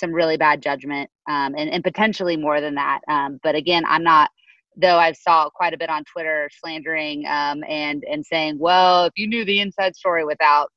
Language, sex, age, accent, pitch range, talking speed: English, female, 30-49, American, 150-180 Hz, 205 wpm